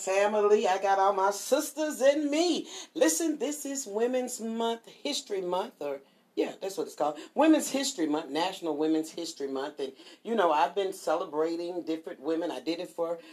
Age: 40-59